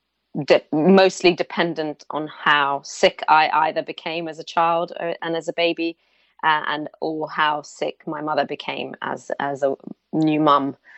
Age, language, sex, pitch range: 30-49, English, female, 145-165 Hz